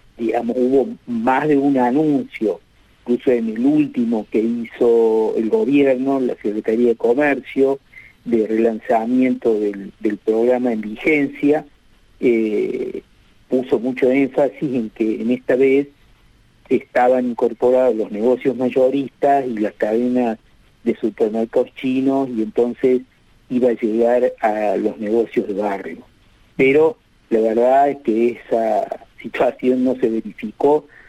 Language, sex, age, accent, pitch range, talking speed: Spanish, male, 50-69, Argentinian, 115-135 Hz, 125 wpm